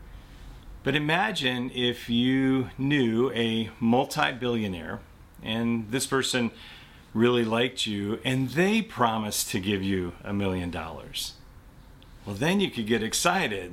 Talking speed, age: 120 wpm, 40-59